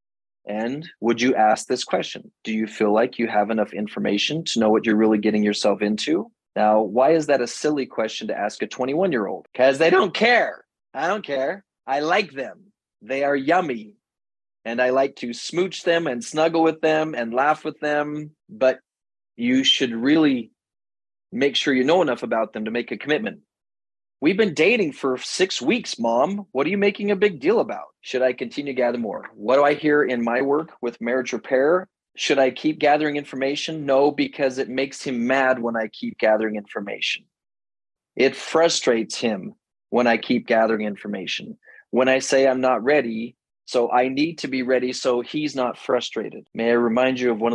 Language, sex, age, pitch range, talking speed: English, male, 30-49, 115-150 Hz, 190 wpm